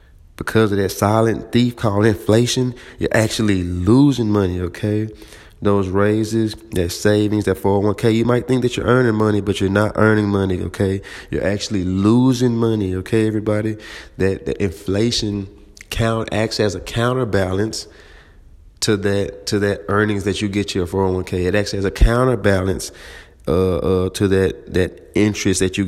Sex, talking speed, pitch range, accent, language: male, 160 wpm, 95-110 Hz, American, English